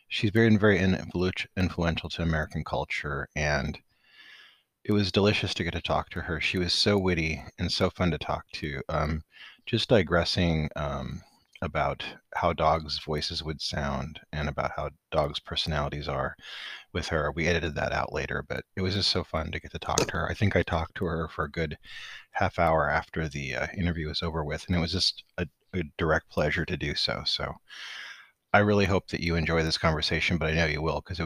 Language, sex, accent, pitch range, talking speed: English, male, American, 75-95 Hz, 205 wpm